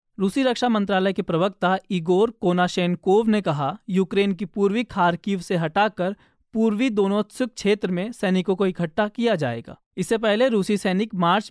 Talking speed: 150 wpm